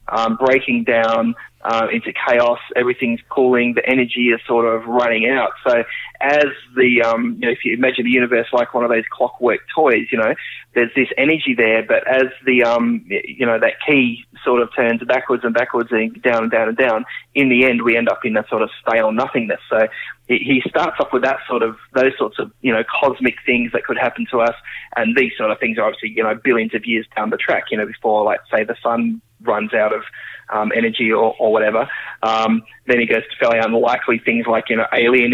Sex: male